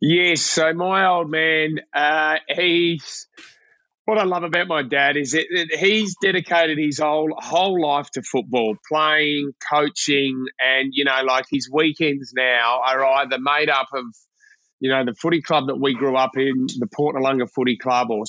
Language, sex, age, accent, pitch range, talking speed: English, male, 30-49, Australian, 130-165 Hz, 170 wpm